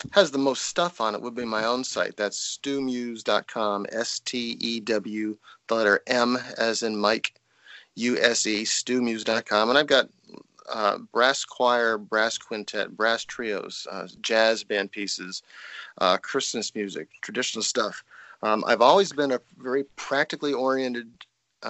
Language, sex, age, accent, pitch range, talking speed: English, male, 40-59, American, 110-130 Hz, 140 wpm